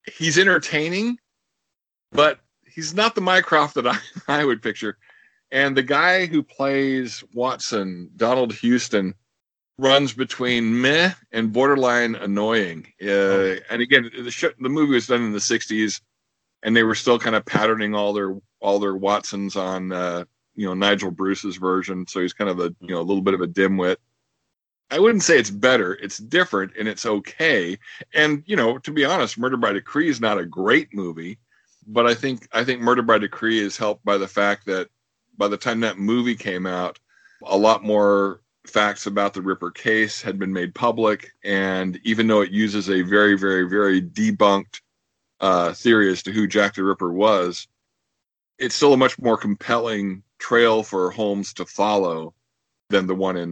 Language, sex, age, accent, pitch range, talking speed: English, male, 50-69, American, 95-120 Hz, 180 wpm